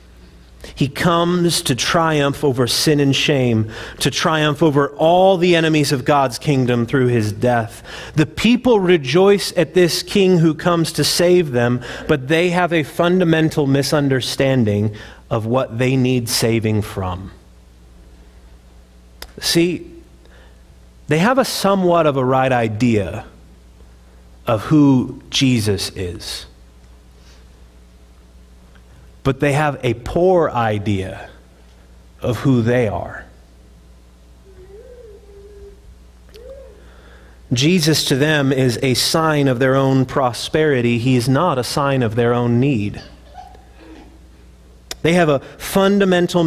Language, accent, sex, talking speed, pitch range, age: English, American, male, 115 wpm, 105-155 Hz, 30-49